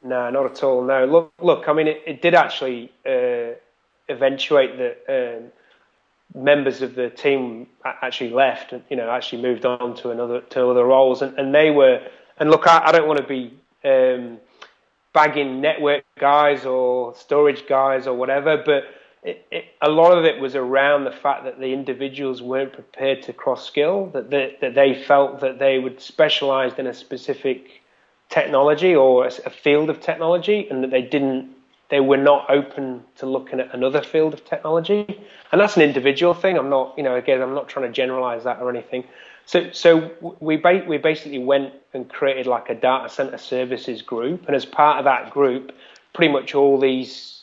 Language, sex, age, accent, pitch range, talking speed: English, male, 30-49, British, 130-155 Hz, 190 wpm